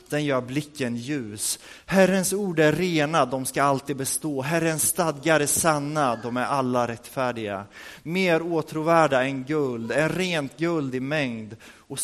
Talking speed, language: 150 wpm, Swedish